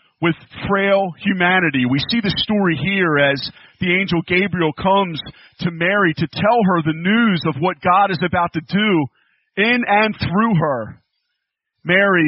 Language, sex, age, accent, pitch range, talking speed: English, male, 40-59, American, 155-190 Hz, 155 wpm